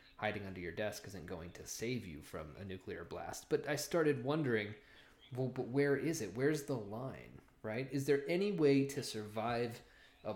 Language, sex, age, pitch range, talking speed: English, male, 20-39, 110-140 Hz, 190 wpm